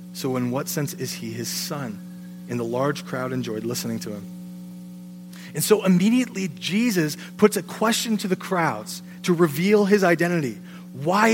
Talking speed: 165 wpm